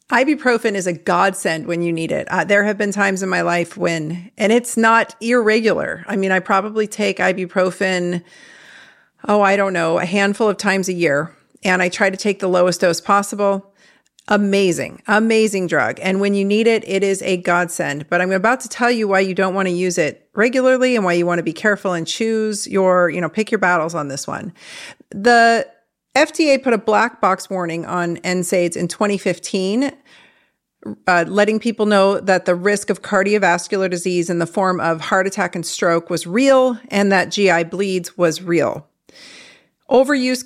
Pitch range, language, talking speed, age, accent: 175-210 Hz, English, 190 wpm, 40-59, American